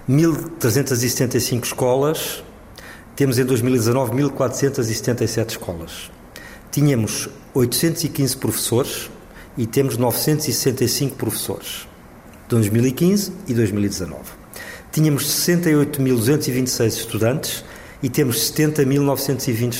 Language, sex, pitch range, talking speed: Portuguese, male, 115-145 Hz, 70 wpm